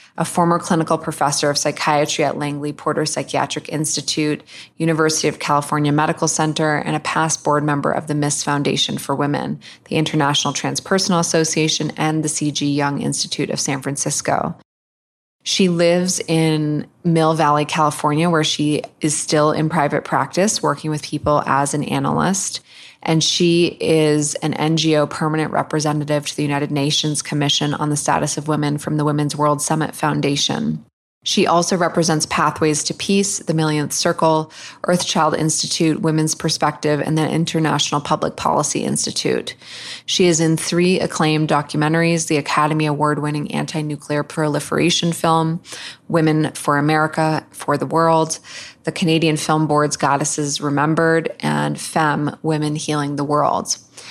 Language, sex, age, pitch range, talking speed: English, female, 20-39, 150-160 Hz, 145 wpm